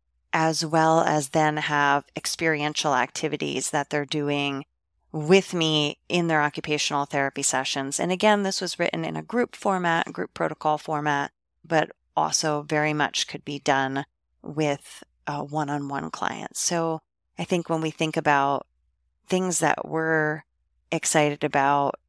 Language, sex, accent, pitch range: English, female, American, 140-160 Hz